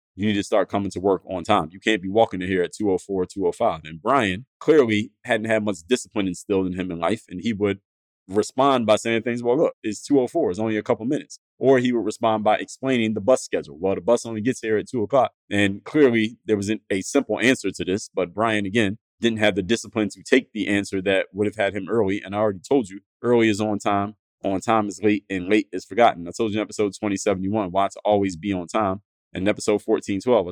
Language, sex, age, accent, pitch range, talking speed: English, male, 20-39, American, 95-120 Hz, 240 wpm